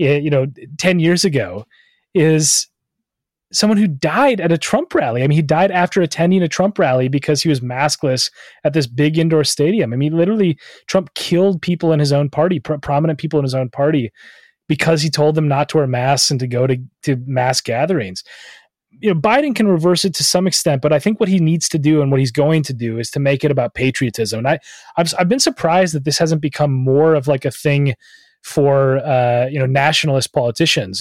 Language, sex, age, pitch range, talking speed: English, male, 30-49, 130-165 Hz, 220 wpm